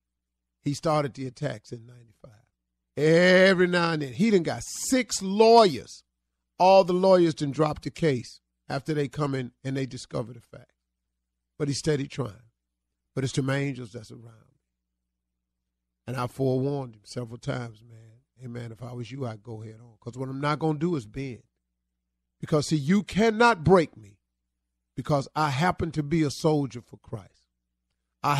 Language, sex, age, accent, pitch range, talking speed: English, male, 40-59, American, 105-155 Hz, 180 wpm